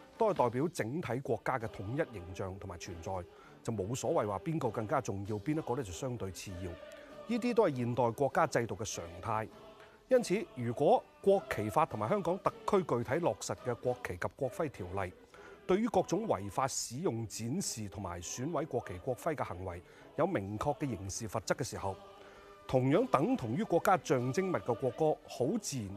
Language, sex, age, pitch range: Chinese, male, 30-49, 105-165 Hz